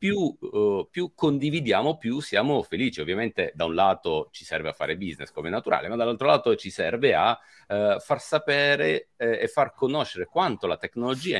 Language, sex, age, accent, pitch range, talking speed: Italian, male, 50-69, native, 110-160 Hz, 165 wpm